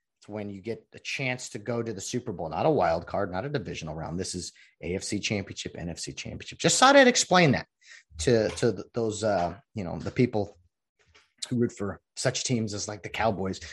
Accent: American